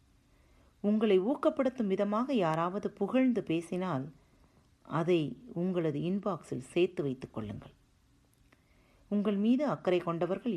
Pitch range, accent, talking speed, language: 135-200 Hz, native, 90 wpm, Tamil